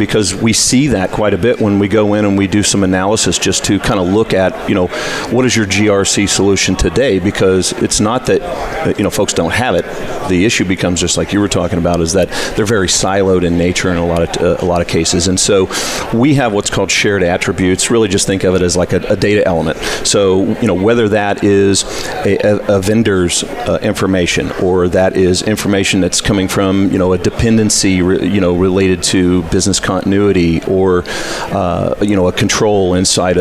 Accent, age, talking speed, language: American, 40-59, 215 wpm, English